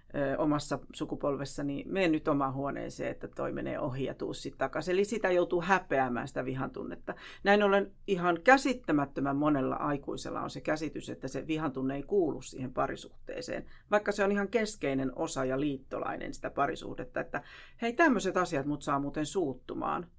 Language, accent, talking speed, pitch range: Finnish, native, 160 wpm, 140-205 Hz